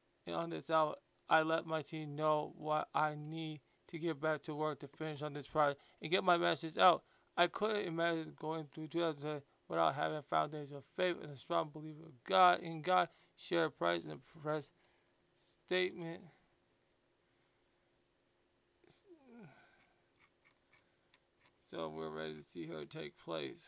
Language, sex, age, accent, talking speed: English, male, 20-39, American, 155 wpm